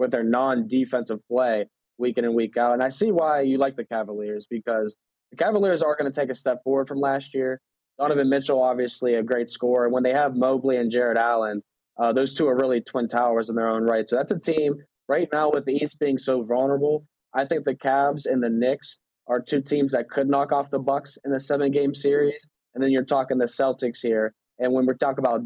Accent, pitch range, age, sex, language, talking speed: American, 120-140 Hz, 20-39, male, English, 235 wpm